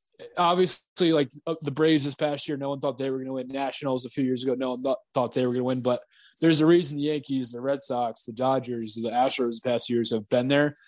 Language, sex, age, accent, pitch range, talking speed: English, male, 20-39, American, 125-145 Hz, 260 wpm